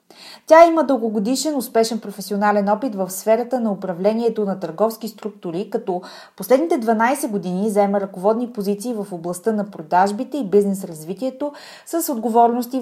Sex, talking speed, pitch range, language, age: female, 130 wpm, 190-260 Hz, Bulgarian, 30-49